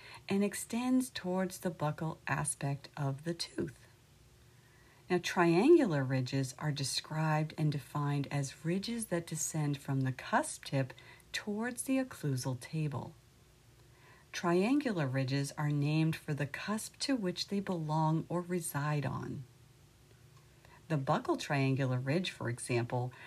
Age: 50-69